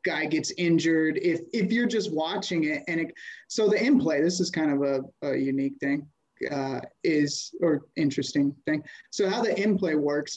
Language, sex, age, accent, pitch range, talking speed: English, male, 30-49, American, 155-185 Hz, 195 wpm